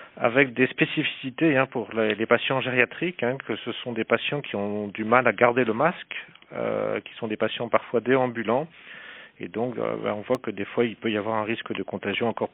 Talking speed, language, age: 200 wpm, French, 40-59